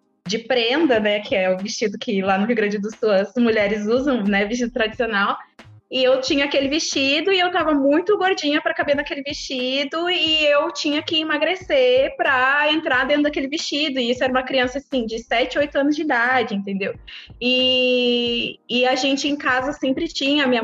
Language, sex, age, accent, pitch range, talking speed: Portuguese, female, 20-39, Brazilian, 220-275 Hz, 190 wpm